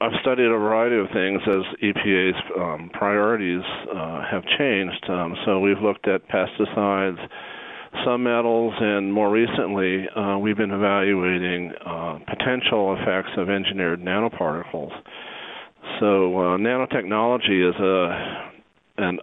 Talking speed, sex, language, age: 120 wpm, male, English, 40-59